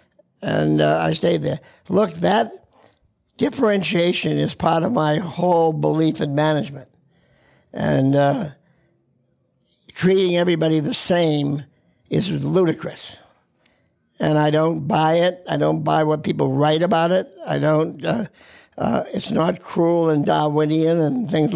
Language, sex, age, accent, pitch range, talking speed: English, male, 60-79, American, 150-180 Hz, 135 wpm